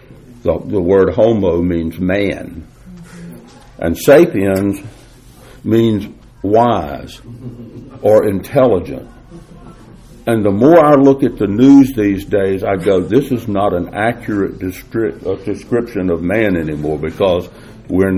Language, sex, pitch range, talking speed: English, male, 95-125 Hz, 120 wpm